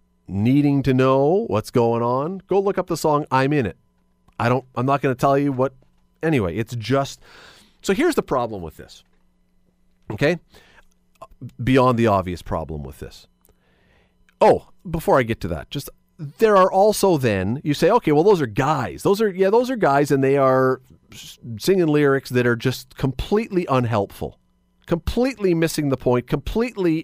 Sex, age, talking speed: male, 40-59, 175 wpm